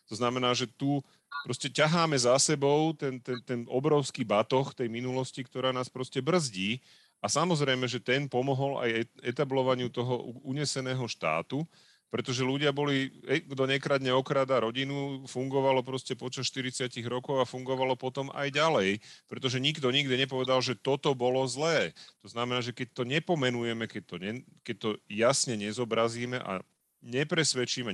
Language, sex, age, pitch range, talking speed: Slovak, male, 40-59, 100-135 Hz, 145 wpm